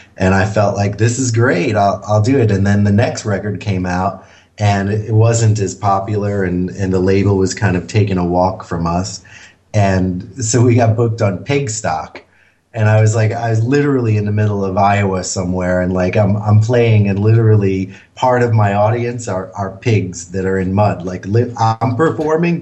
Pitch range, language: 95-110 Hz, English